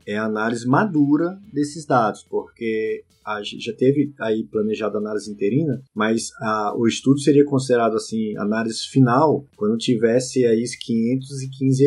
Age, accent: 20-39, Brazilian